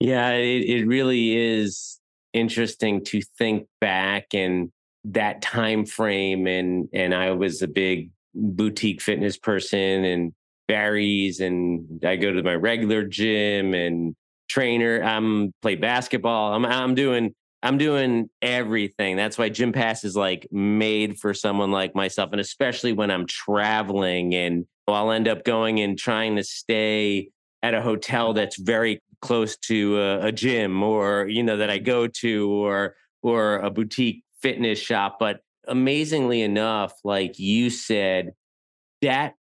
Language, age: English, 30-49